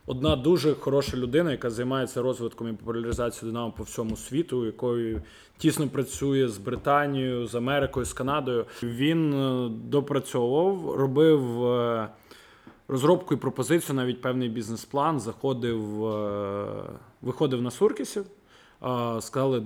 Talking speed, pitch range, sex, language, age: 110 wpm, 120-145 Hz, male, Russian, 20-39